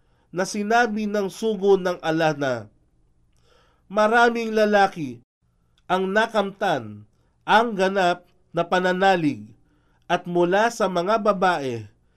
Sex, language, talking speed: male, Filipino, 95 wpm